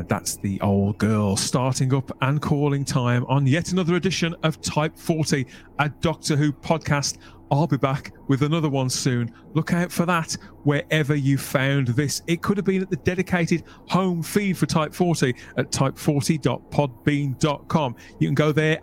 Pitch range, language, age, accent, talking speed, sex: 135-170 Hz, English, 40-59, British, 170 wpm, male